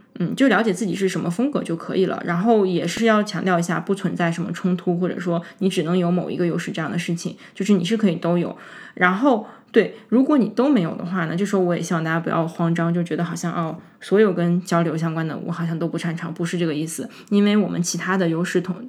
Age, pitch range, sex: 20-39, 170-205 Hz, female